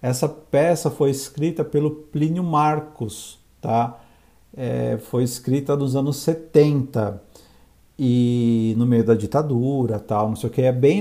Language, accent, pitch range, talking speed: Portuguese, Brazilian, 115-150 Hz, 145 wpm